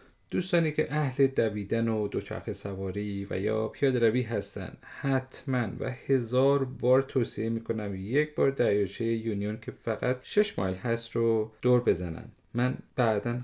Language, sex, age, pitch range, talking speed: Persian, male, 30-49, 105-135 Hz, 145 wpm